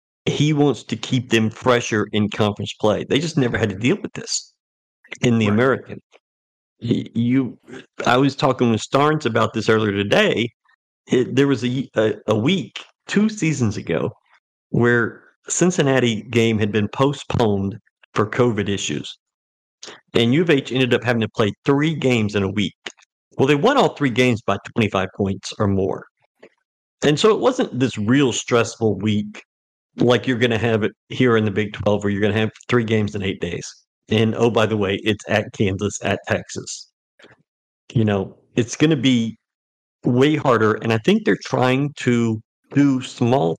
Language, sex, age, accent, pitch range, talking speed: English, male, 50-69, American, 105-130 Hz, 175 wpm